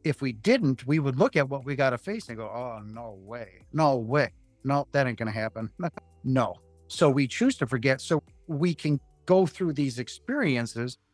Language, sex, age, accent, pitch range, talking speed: English, male, 50-69, American, 115-155 Hz, 205 wpm